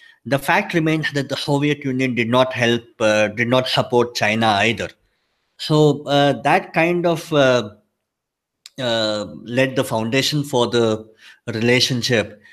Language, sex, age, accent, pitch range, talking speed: English, male, 50-69, Indian, 120-150 Hz, 140 wpm